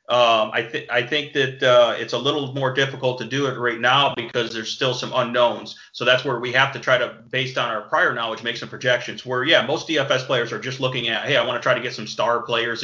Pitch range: 110-130 Hz